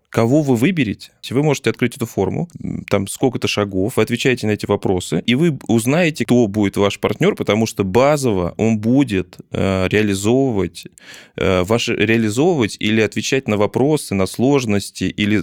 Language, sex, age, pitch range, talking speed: Russian, male, 20-39, 95-120 Hz, 140 wpm